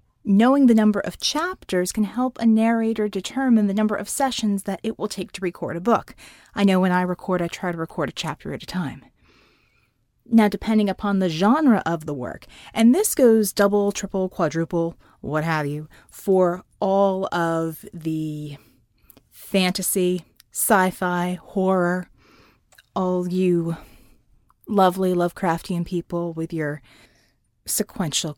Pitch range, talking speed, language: 175-230 Hz, 145 wpm, English